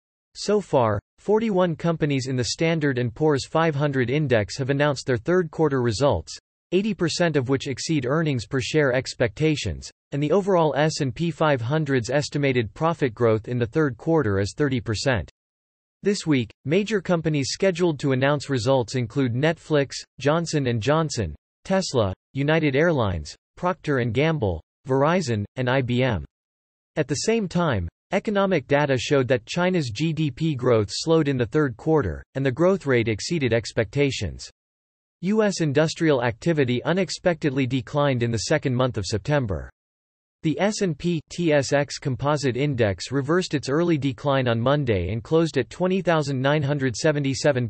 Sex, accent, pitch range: male, American, 120-160 Hz